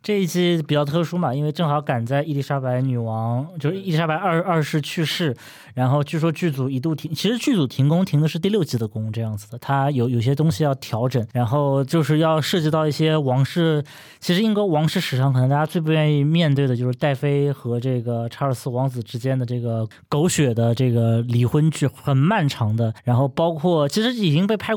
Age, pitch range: 20-39, 125-165 Hz